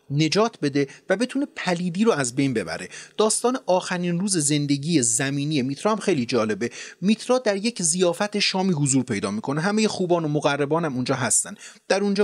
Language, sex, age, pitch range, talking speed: Persian, male, 30-49, 140-200 Hz, 165 wpm